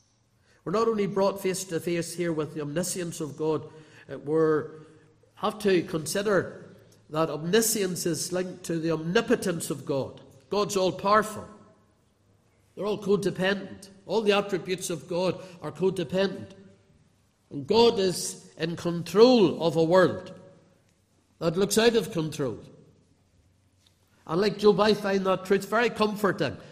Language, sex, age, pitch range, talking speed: English, male, 50-69, 150-195 Hz, 135 wpm